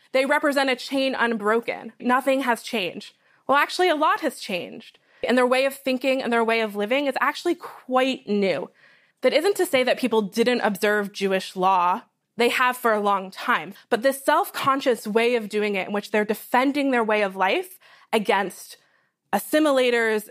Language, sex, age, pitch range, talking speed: English, female, 20-39, 210-270 Hz, 180 wpm